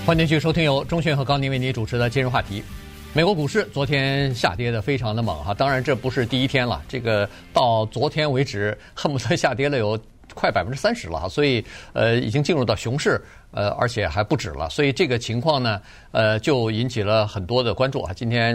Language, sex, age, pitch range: Chinese, male, 50-69, 105-135 Hz